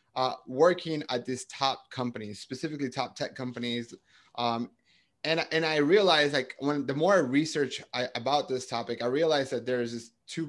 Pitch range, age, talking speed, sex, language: 125-155 Hz, 30-49, 170 wpm, male, English